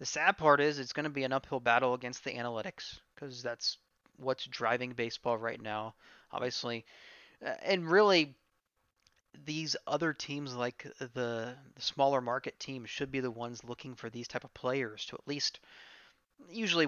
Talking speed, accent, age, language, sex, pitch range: 165 wpm, American, 30-49, English, male, 120-140 Hz